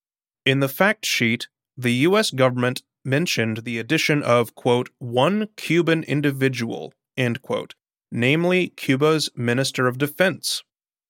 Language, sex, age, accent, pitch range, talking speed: English, male, 30-49, American, 125-170 Hz, 125 wpm